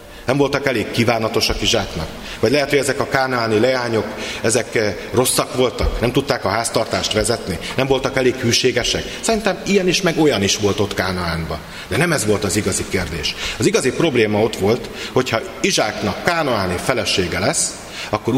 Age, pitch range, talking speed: 40-59, 100-130 Hz, 165 wpm